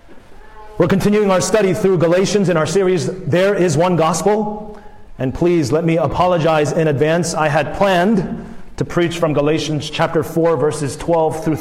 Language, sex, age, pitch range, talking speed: English, male, 30-49, 140-175 Hz, 165 wpm